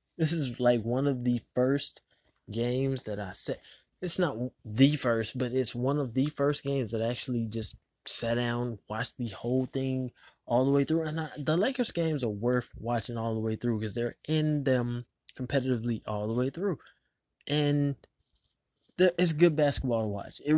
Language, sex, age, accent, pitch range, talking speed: English, male, 20-39, American, 115-145 Hz, 190 wpm